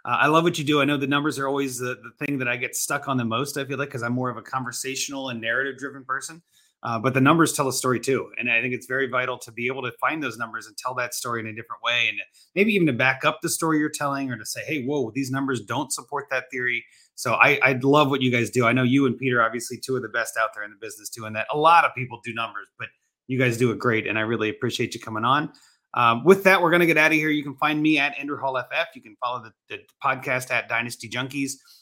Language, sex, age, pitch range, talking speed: English, male, 30-49, 120-145 Hz, 290 wpm